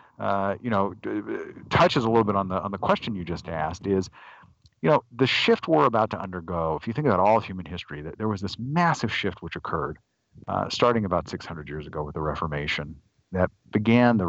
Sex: male